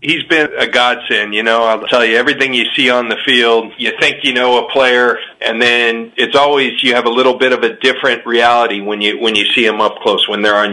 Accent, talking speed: American, 250 wpm